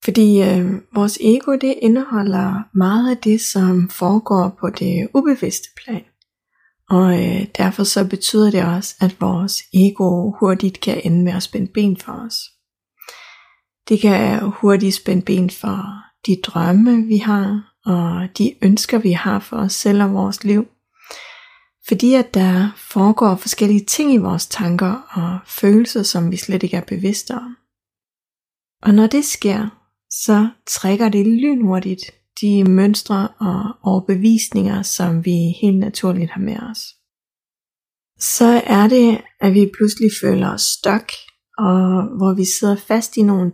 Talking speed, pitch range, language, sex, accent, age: 145 wpm, 185-220 Hz, Danish, female, native, 30-49